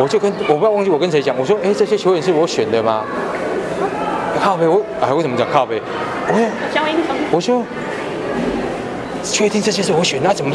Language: Chinese